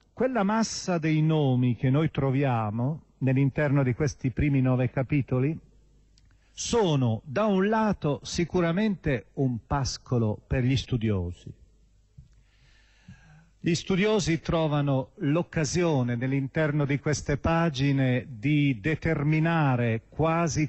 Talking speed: 100 wpm